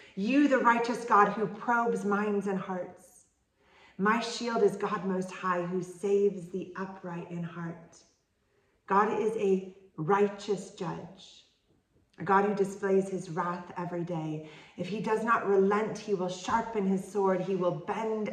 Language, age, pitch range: English, 40-59, 175-210 Hz